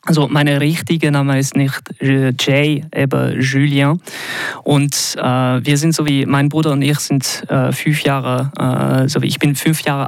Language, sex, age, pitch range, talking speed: German, male, 20-39, 135-150 Hz, 180 wpm